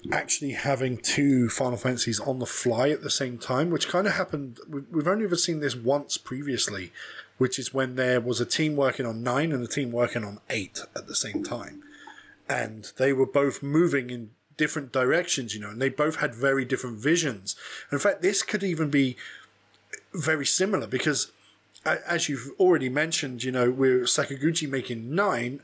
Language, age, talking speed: English, 20-39, 185 wpm